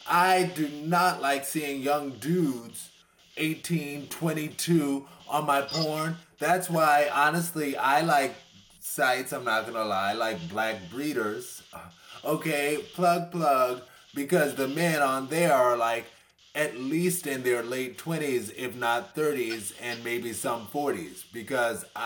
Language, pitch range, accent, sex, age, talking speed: English, 125-170 Hz, American, male, 30-49, 135 wpm